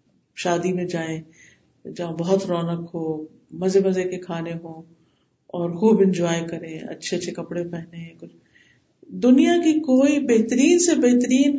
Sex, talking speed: female, 135 wpm